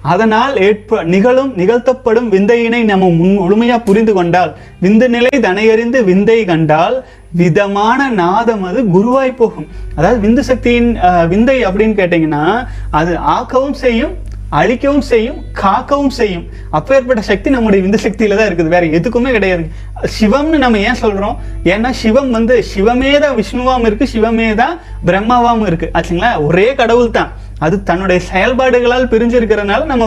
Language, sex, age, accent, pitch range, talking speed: Tamil, male, 30-49, native, 185-245 Hz, 130 wpm